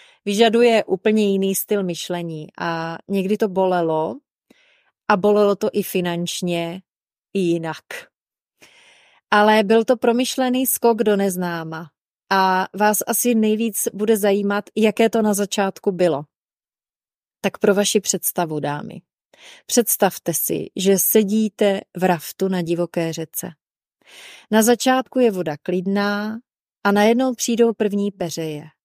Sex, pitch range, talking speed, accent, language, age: female, 175-225 Hz, 120 wpm, native, Czech, 30-49